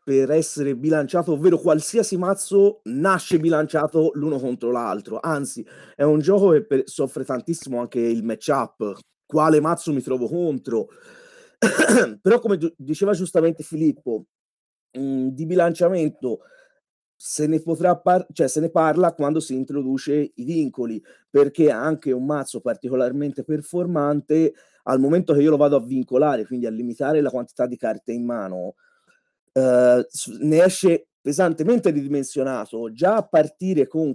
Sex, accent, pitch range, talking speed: male, native, 135-185 Hz, 140 wpm